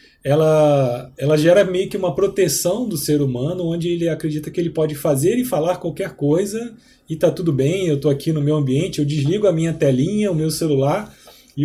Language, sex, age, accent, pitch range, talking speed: Portuguese, male, 20-39, Brazilian, 140-185 Hz, 205 wpm